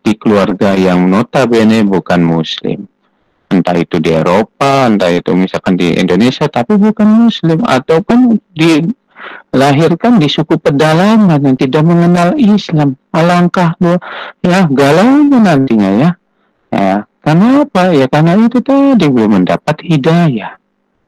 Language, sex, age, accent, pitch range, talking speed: Indonesian, male, 50-69, native, 120-200 Hz, 115 wpm